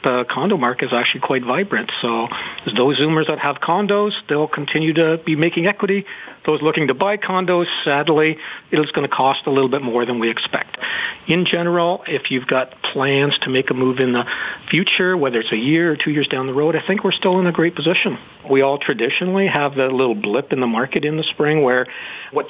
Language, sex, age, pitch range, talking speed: English, male, 50-69, 125-170 Hz, 220 wpm